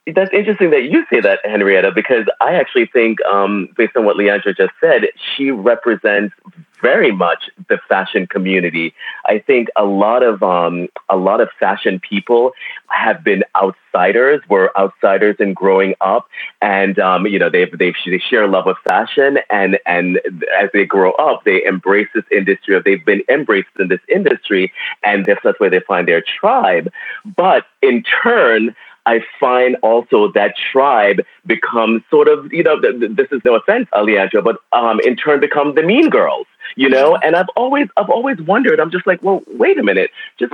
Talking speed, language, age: 180 wpm, English, 30-49